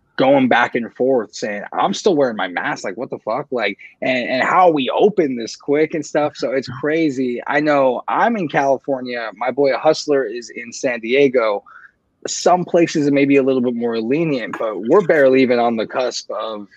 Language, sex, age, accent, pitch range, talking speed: English, male, 20-39, American, 120-155 Hz, 210 wpm